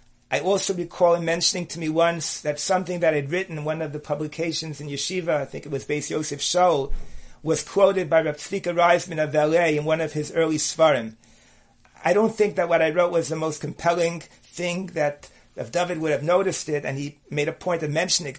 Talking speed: 215 wpm